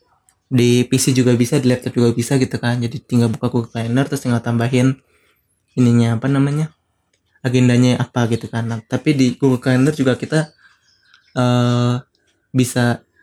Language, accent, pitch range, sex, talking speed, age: Indonesian, native, 125-135 Hz, male, 155 wpm, 20-39